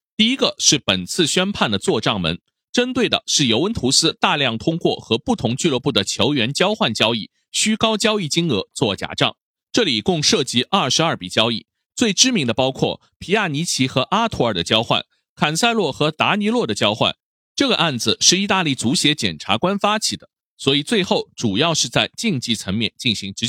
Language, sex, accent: Chinese, male, native